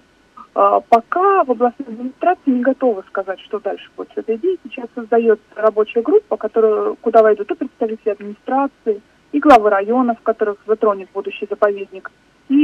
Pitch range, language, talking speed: 220-270 Hz, Russian, 145 wpm